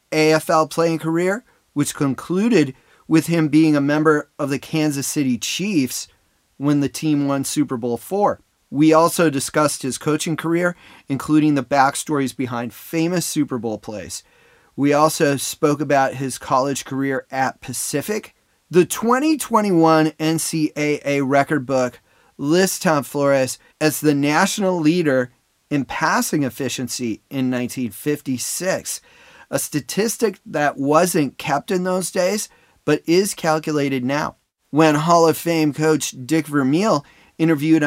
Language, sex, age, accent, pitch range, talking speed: English, male, 30-49, American, 135-160 Hz, 130 wpm